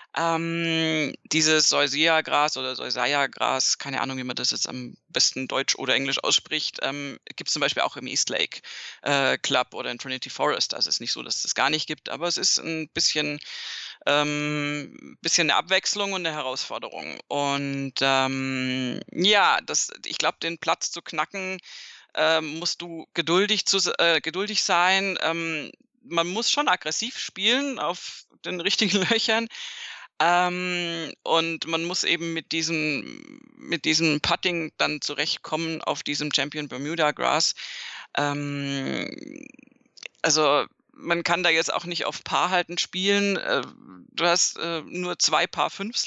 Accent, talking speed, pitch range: German, 150 wpm, 155-195 Hz